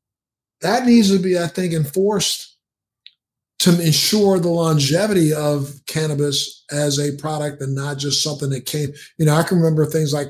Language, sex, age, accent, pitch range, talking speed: English, male, 50-69, American, 145-175 Hz, 170 wpm